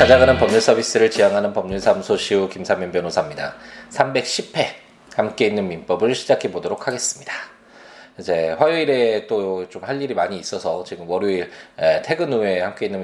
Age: 20-39